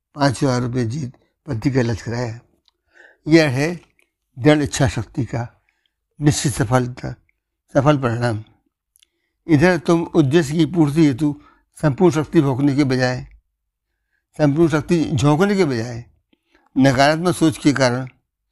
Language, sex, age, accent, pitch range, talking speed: Hindi, male, 60-79, native, 125-150 Hz, 125 wpm